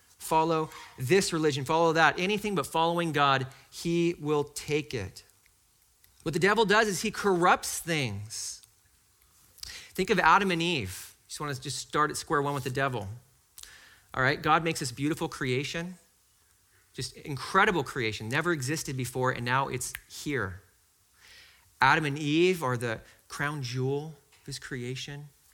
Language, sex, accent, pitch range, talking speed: English, male, American, 125-170 Hz, 150 wpm